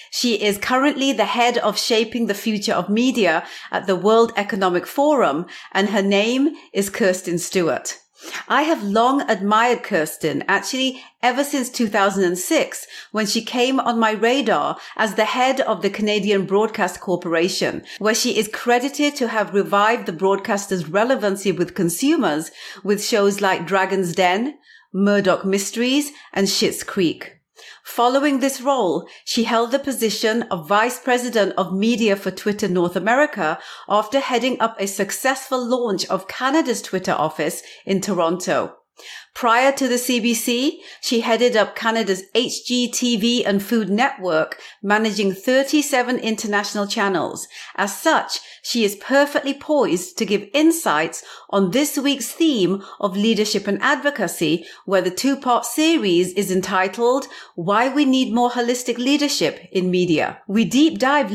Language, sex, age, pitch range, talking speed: English, female, 40-59, 195-255 Hz, 140 wpm